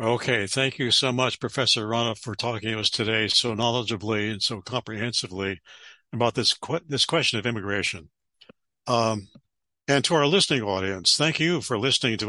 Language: English